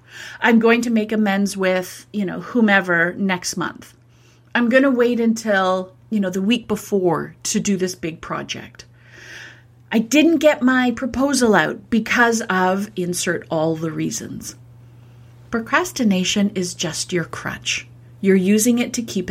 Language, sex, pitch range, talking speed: English, female, 175-230 Hz, 150 wpm